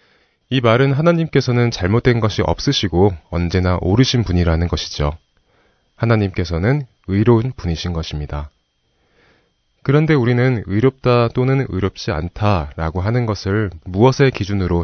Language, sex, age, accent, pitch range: Korean, male, 30-49, native, 85-120 Hz